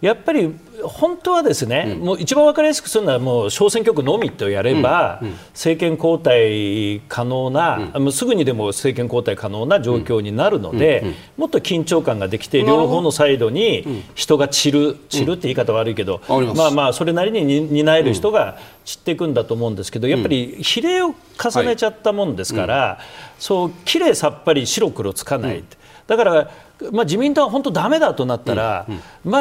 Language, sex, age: Japanese, male, 40-59